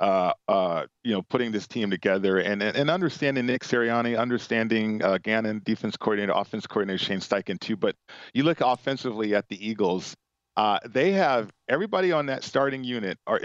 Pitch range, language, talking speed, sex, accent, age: 105-125 Hz, English, 175 wpm, male, American, 40-59